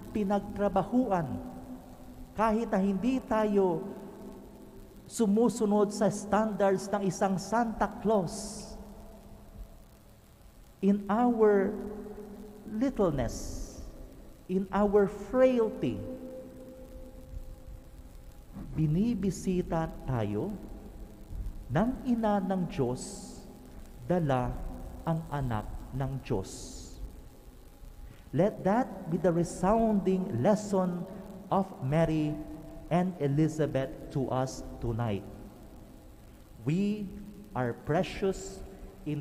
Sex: male